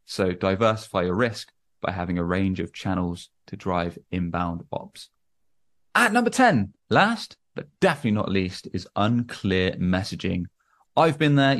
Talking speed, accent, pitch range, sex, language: 145 wpm, British, 95-130 Hz, male, English